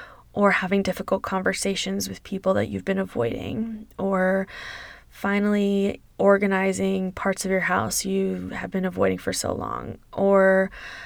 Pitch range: 185-220 Hz